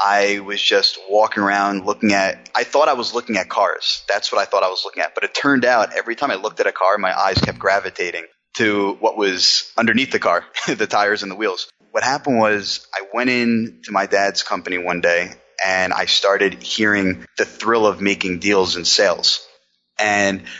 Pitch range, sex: 95-115 Hz, male